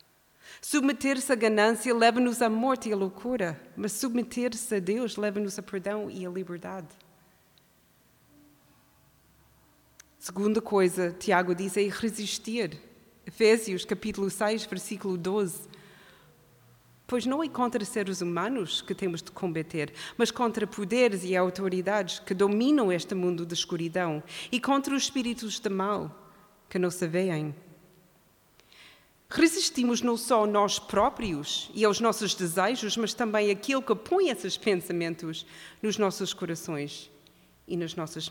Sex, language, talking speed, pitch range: female, Portuguese, 130 wpm, 185-240 Hz